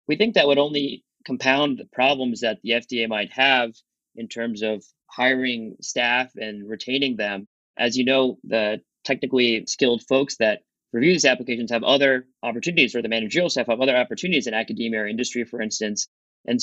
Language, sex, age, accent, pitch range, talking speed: English, male, 30-49, American, 110-130 Hz, 175 wpm